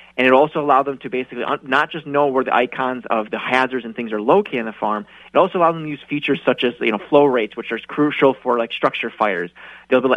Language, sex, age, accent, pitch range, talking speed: English, male, 30-49, American, 120-145 Hz, 270 wpm